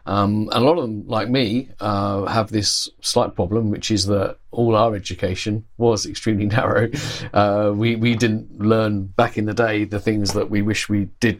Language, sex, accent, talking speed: English, male, British, 200 wpm